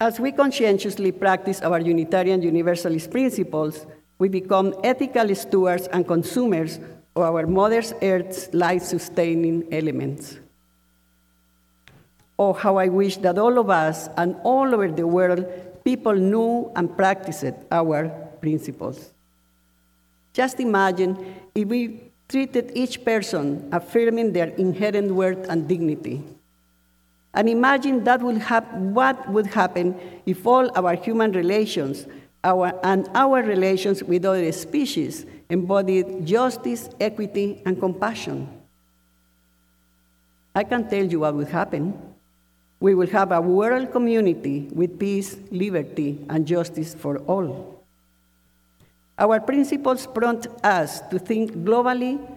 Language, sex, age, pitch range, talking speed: English, female, 50-69, 160-220 Hz, 120 wpm